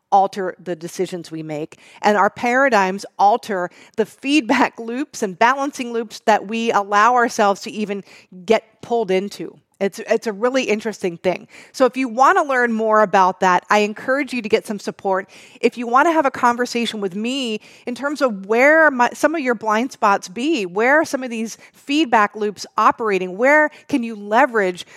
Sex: female